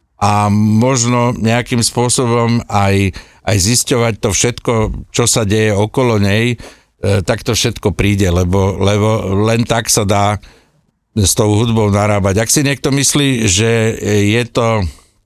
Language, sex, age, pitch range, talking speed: Slovak, male, 60-79, 100-115 Hz, 140 wpm